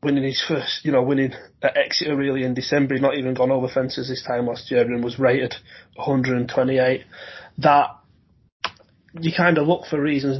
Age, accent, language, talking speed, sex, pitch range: 30-49, British, English, 185 wpm, male, 125-150 Hz